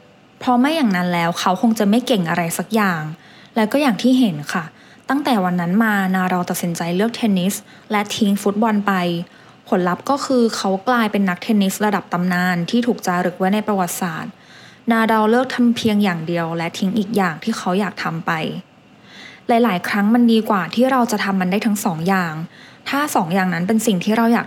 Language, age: English, 20-39